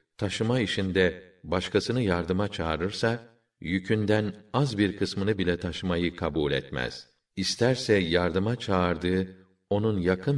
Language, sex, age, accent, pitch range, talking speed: Turkish, male, 50-69, native, 85-100 Hz, 105 wpm